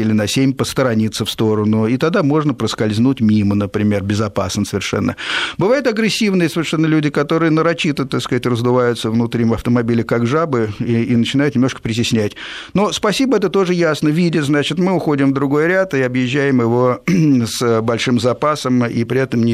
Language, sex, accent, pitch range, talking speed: Russian, male, native, 110-140 Hz, 170 wpm